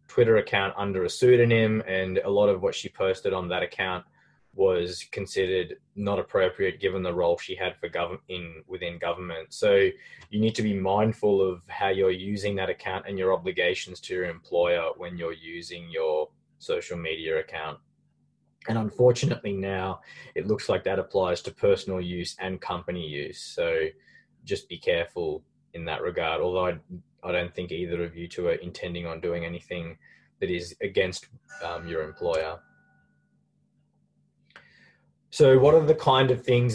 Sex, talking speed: male, 165 wpm